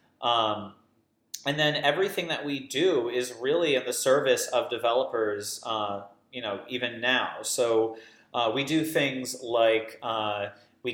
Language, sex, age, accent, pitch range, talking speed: English, male, 30-49, American, 110-130 Hz, 150 wpm